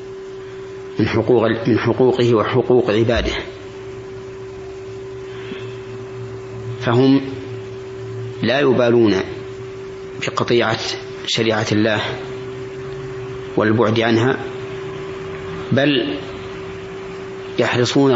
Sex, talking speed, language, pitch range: male, 50 wpm, Arabic, 110-130 Hz